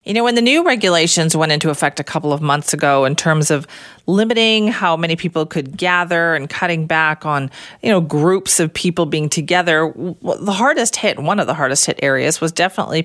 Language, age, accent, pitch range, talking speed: English, 40-59, American, 155-205 Hz, 205 wpm